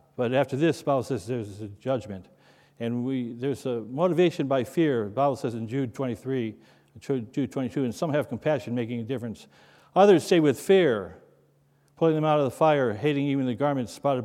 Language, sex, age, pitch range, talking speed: English, male, 60-79, 115-140 Hz, 190 wpm